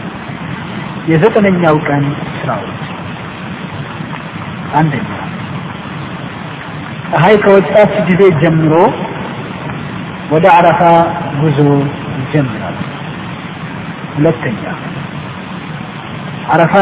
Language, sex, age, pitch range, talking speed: Amharic, male, 50-69, 155-185 Hz, 50 wpm